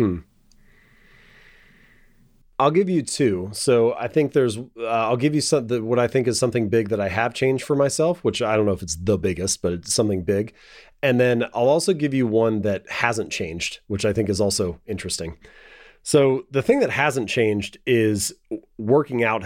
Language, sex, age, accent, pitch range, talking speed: English, male, 30-49, American, 95-125 Hz, 195 wpm